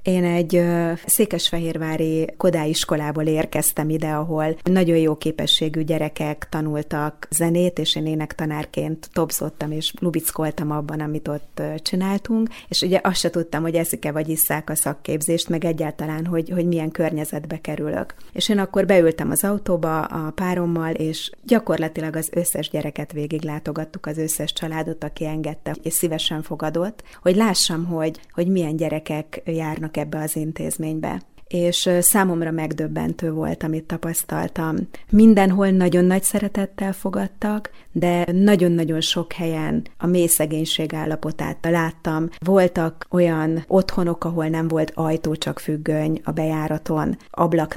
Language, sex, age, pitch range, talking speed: Hungarian, female, 30-49, 155-175 Hz, 130 wpm